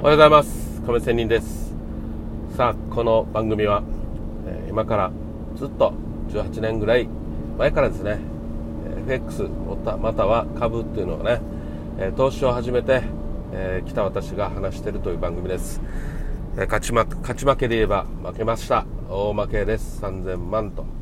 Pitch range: 90-115 Hz